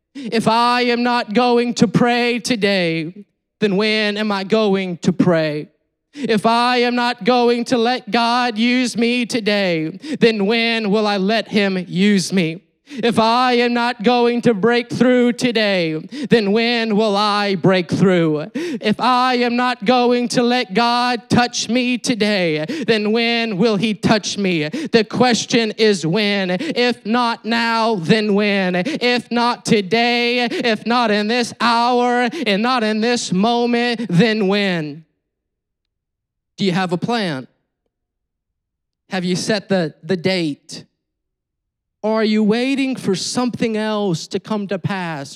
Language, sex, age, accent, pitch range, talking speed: English, male, 20-39, American, 190-235 Hz, 150 wpm